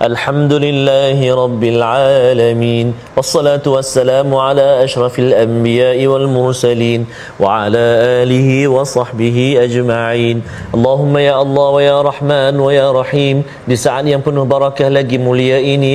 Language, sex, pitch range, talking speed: Malayalam, male, 125-145 Hz, 125 wpm